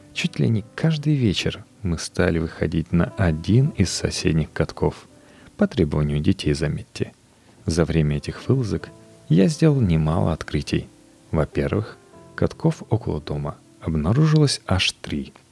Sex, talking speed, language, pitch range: male, 125 wpm, Russian, 80-125 Hz